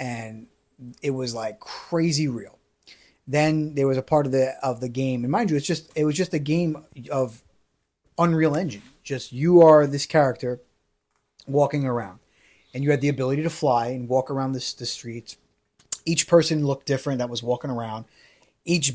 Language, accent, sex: English, American, male